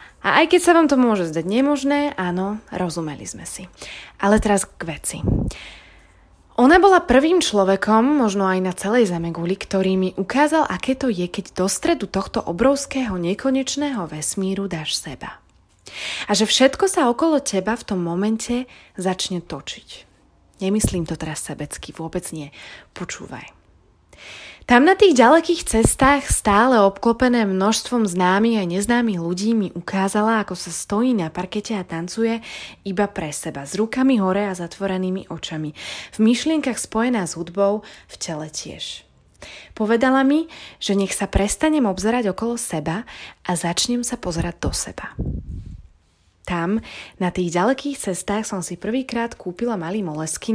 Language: Slovak